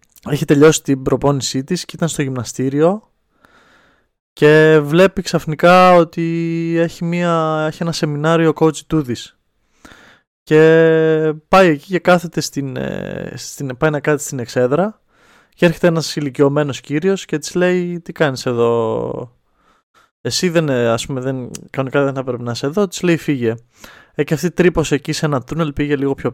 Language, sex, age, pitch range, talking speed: Greek, male, 20-39, 135-165 Hz, 155 wpm